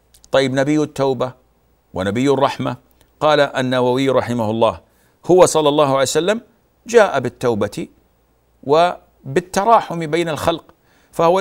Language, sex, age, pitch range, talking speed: Arabic, male, 50-69, 115-150 Hz, 105 wpm